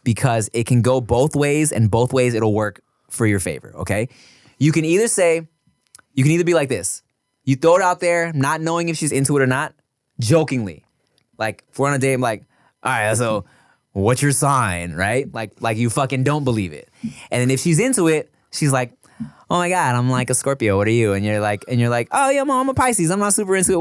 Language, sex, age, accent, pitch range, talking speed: English, male, 20-39, American, 115-170 Hz, 240 wpm